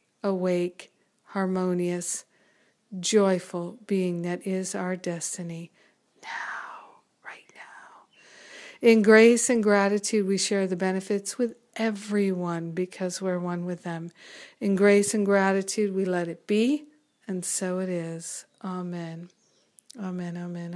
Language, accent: English, American